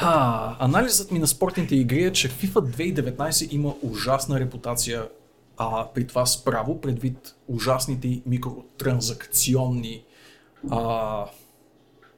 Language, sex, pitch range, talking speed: Bulgarian, male, 125-145 Hz, 105 wpm